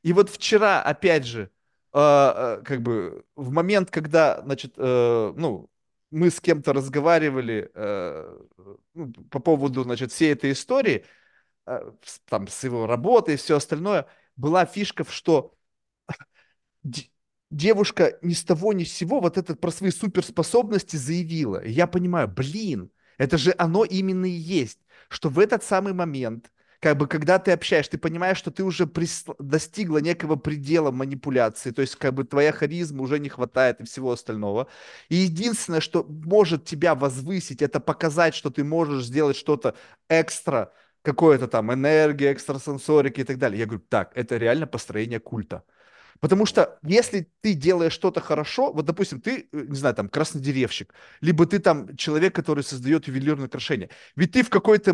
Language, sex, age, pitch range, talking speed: Russian, male, 30-49, 140-180 Hz, 155 wpm